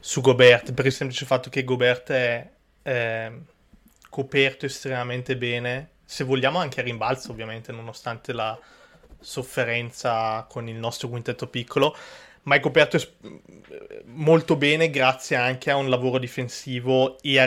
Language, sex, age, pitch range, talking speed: Italian, male, 20-39, 120-135 Hz, 135 wpm